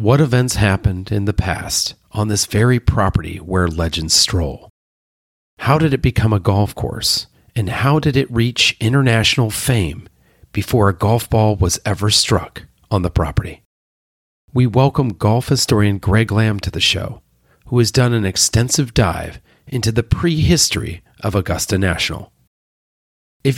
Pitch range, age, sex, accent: 95-130 Hz, 40-59, male, American